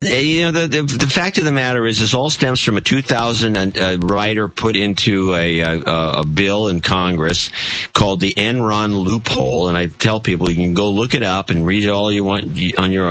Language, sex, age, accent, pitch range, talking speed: English, male, 50-69, American, 95-135 Hz, 220 wpm